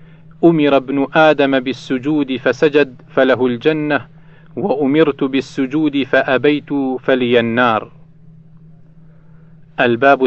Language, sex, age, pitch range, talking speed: Arabic, male, 40-59, 125-155 Hz, 75 wpm